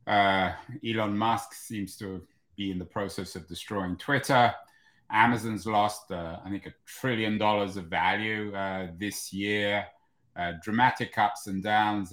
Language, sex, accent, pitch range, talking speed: English, male, British, 100-130 Hz, 150 wpm